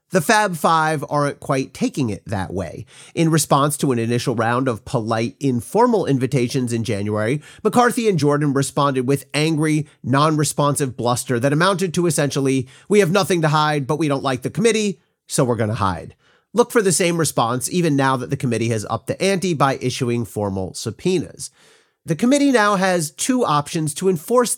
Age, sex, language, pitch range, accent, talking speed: 40-59, male, English, 125-180 Hz, American, 185 wpm